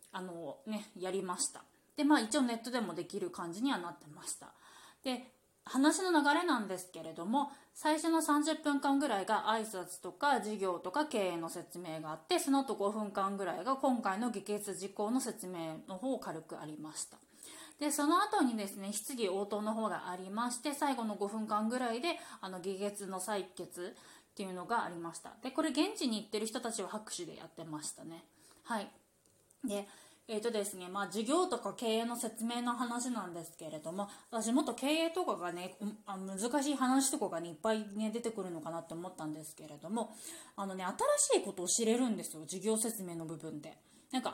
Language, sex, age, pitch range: Japanese, female, 20-39, 180-255 Hz